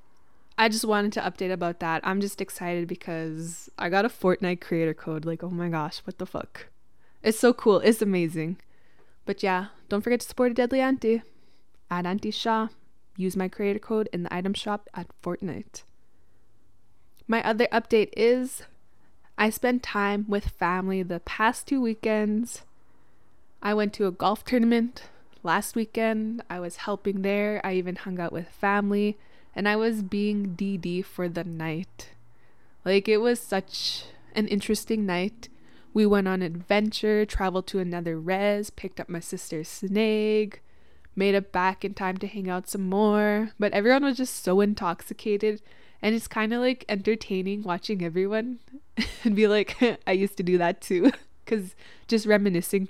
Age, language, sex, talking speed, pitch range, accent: 20-39, English, female, 165 wpm, 180-220 Hz, American